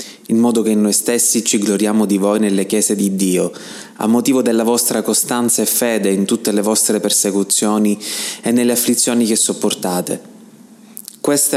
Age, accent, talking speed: 20-39, native, 160 wpm